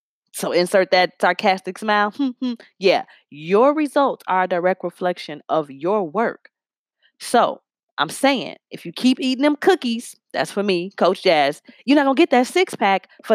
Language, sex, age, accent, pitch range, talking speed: English, female, 20-39, American, 175-245 Hz, 170 wpm